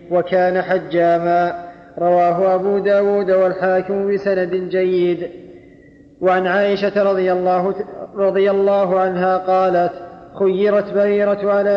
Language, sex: Arabic, male